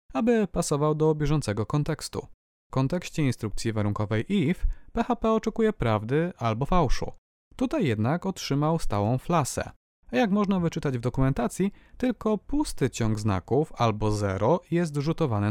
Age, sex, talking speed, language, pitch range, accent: 30-49, male, 130 wpm, Polish, 115-175 Hz, native